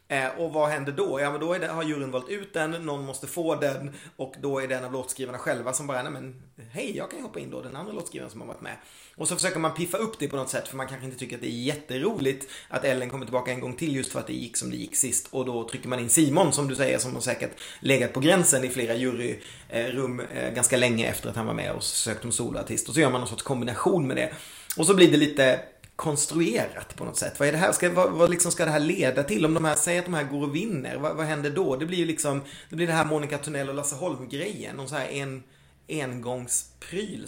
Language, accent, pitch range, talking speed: Swedish, native, 130-160 Hz, 265 wpm